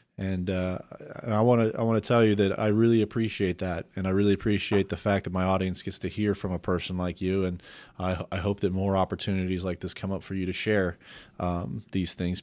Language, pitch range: English, 90-105 Hz